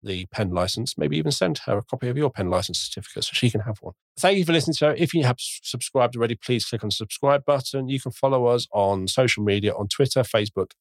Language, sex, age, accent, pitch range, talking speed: English, male, 40-59, British, 100-130 Hz, 255 wpm